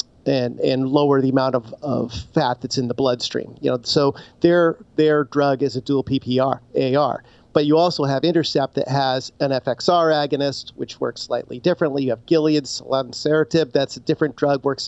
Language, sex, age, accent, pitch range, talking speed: English, male, 50-69, American, 130-155 Hz, 185 wpm